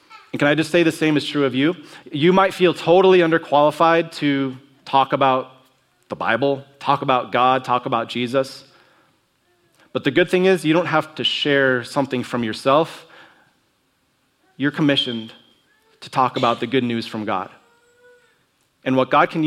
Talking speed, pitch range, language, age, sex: 165 wpm, 130-165 Hz, English, 30-49, male